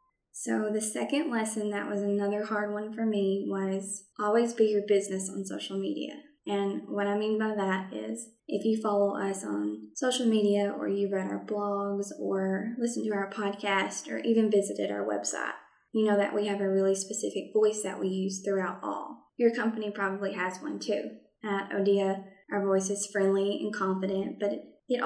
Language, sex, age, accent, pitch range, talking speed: English, female, 10-29, American, 195-220 Hz, 185 wpm